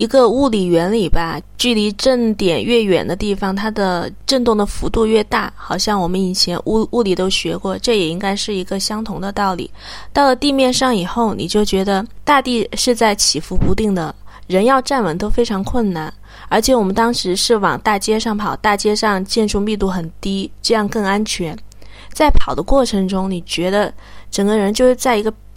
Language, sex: English, female